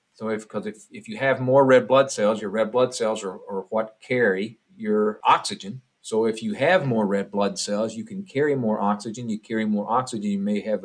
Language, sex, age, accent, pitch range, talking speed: English, male, 50-69, American, 110-135 Hz, 225 wpm